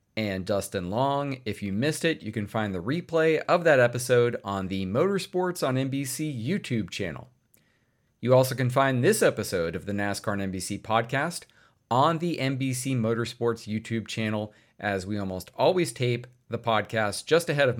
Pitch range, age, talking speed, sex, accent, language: 105-135 Hz, 40-59, 170 wpm, male, American, English